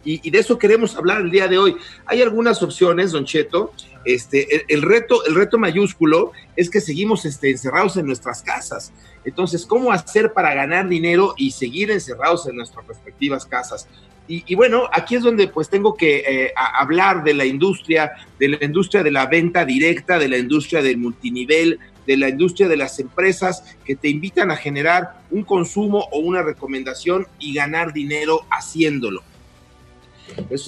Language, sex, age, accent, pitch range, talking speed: Spanish, male, 40-59, Mexican, 150-195 Hz, 175 wpm